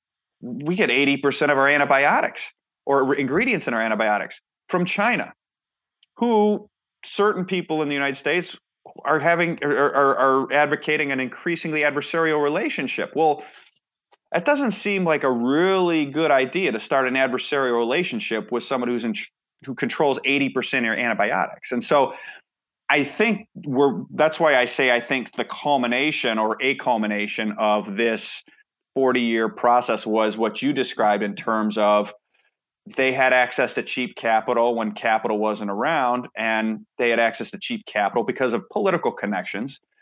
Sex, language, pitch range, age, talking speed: male, English, 110-145 Hz, 30-49, 155 wpm